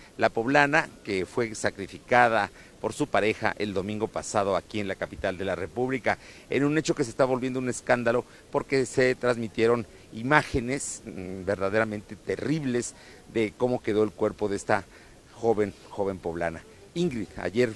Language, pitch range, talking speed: Spanish, 105-140 Hz, 150 wpm